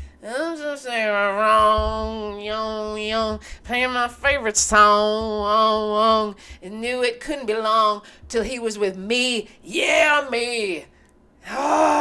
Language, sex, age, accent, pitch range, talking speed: English, female, 30-49, American, 215-310 Hz, 120 wpm